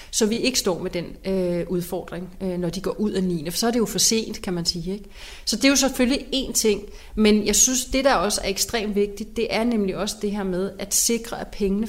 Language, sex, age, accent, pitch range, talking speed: Danish, female, 30-49, native, 195-230 Hz, 265 wpm